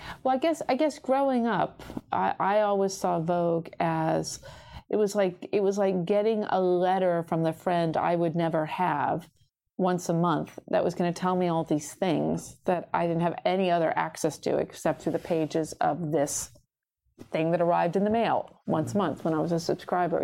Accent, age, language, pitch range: American, 40-59, English, 170-215 Hz